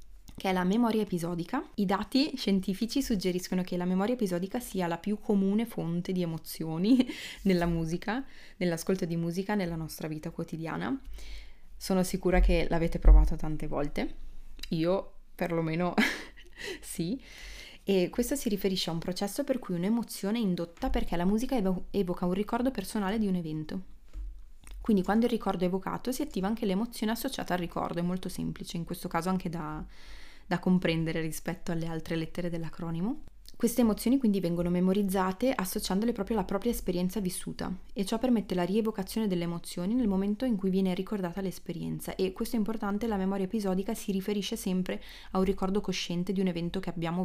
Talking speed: 170 wpm